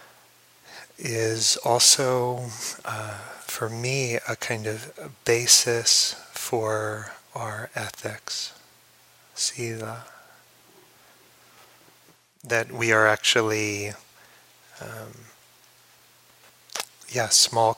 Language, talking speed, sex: English, 70 wpm, male